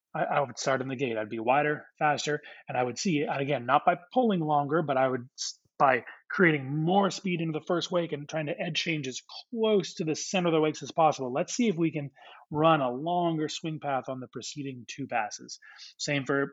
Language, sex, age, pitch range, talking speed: English, male, 30-49, 135-165 Hz, 230 wpm